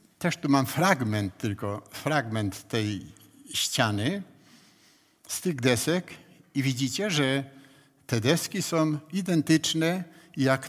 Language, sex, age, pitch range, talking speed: Polish, male, 60-79, 105-140 Hz, 105 wpm